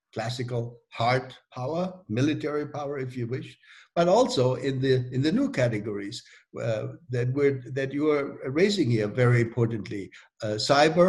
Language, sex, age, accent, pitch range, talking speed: English, male, 60-79, German, 120-155 Hz, 150 wpm